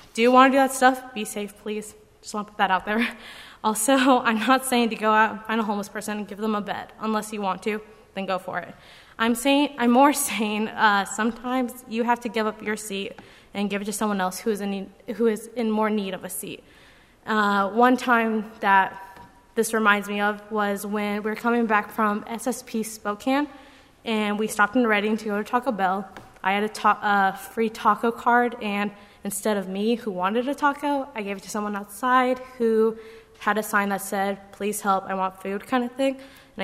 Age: 20-39